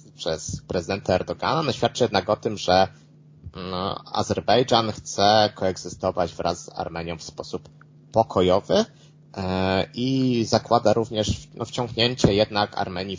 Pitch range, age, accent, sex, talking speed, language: 90-125 Hz, 20-39, native, male, 125 wpm, Polish